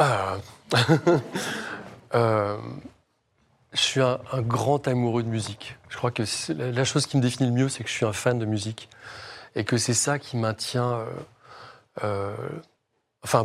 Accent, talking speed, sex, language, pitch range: French, 165 wpm, male, French, 110-125 Hz